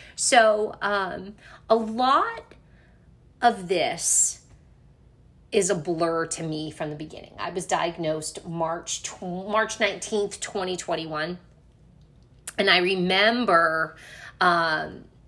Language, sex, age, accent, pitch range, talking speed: English, female, 30-49, American, 160-195 Hz, 100 wpm